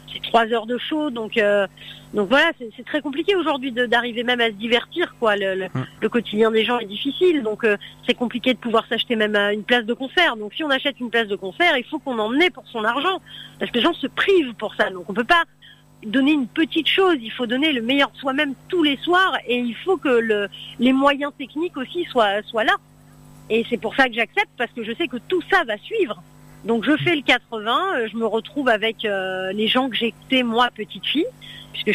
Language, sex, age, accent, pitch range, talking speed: French, female, 40-59, French, 200-265 Hz, 240 wpm